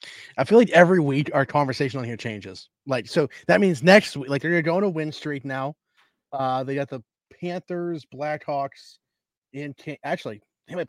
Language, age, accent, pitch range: English, 30-49, American, 115-145 Hz